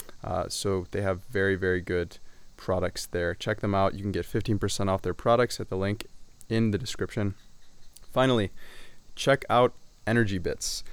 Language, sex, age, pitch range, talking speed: English, male, 20-39, 95-105 Hz, 165 wpm